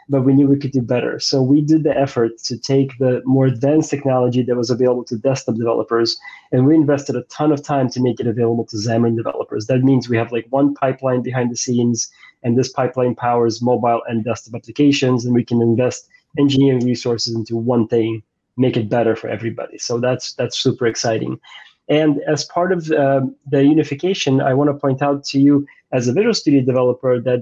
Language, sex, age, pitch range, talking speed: English, male, 20-39, 125-140 Hz, 210 wpm